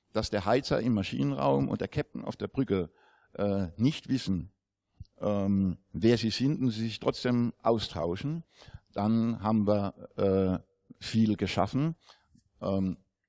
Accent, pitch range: German, 95-115 Hz